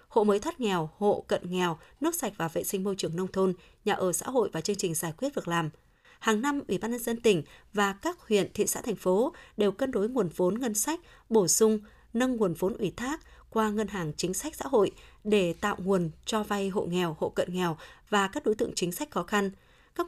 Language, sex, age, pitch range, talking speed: Vietnamese, female, 20-39, 185-240 Hz, 240 wpm